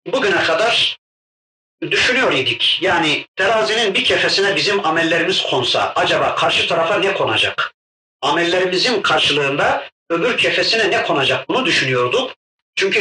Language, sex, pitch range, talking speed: Turkish, male, 155-215 Hz, 110 wpm